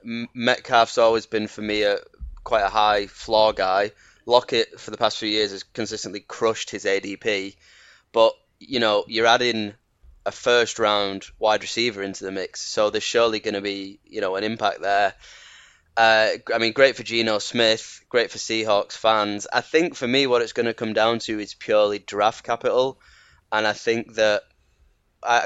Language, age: English, 10-29